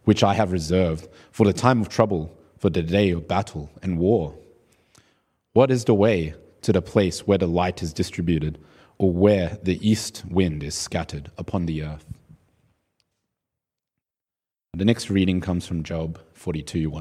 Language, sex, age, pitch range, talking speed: English, male, 30-49, 80-100 Hz, 160 wpm